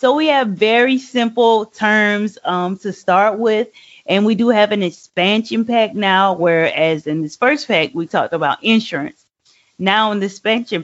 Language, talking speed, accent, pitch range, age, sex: English, 170 wpm, American, 185-240 Hz, 30-49, female